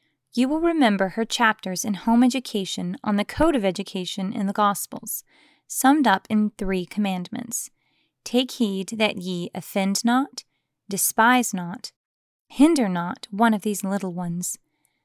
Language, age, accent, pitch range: English, 20-39, American, 190-235 Hz